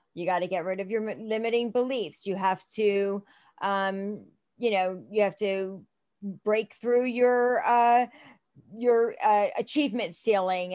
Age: 40-59